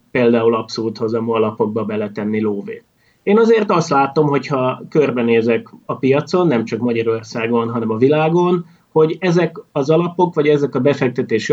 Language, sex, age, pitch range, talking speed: Hungarian, male, 30-49, 115-160 Hz, 145 wpm